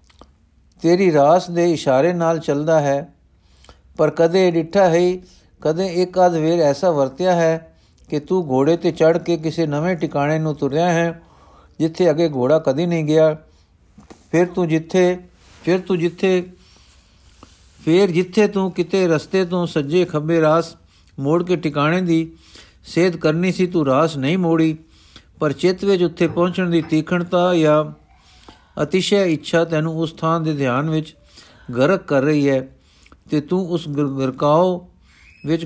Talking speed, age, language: 145 wpm, 60-79, Punjabi